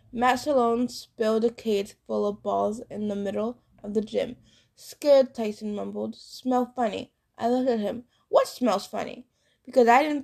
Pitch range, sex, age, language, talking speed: 210-250 Hz, female, 20-39, English, 170 wpm